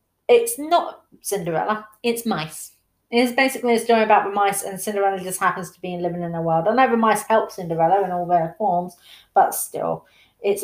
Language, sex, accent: English, female, British